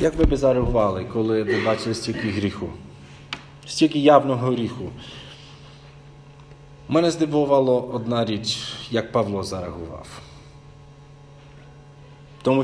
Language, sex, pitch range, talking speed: Ukrainian, male, 120-145 Hz, 95 wpm